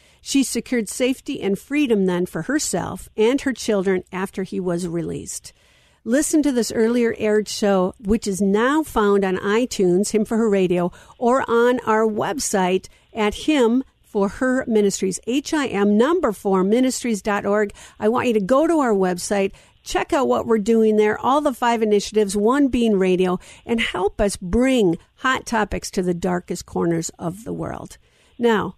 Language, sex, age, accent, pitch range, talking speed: English, female, 50-69, American, 195-255 Hz, 160 wpm